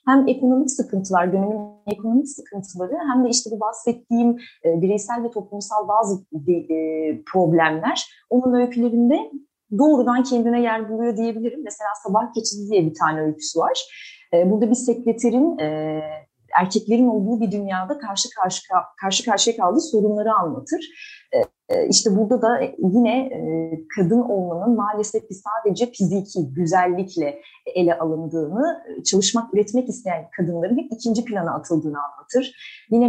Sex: female